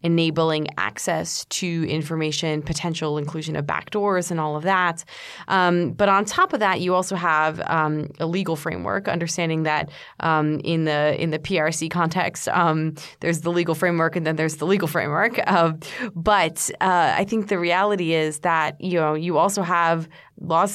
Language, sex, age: English, female, 20-39